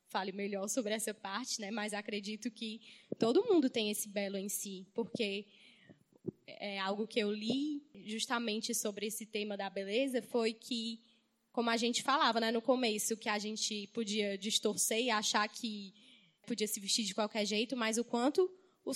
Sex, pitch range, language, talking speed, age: female, 215-265 Hz, Portuguese, 175 wpm, 10-29